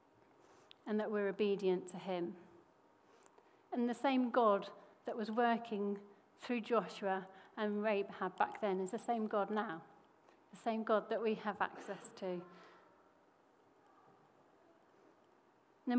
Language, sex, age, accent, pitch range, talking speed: English, female, 40-59, British, 195-230 Hz, 125 wpm